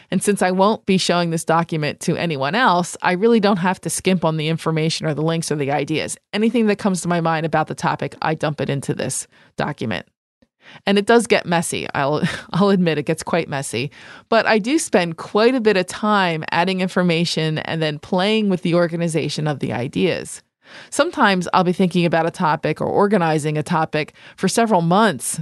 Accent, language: American, English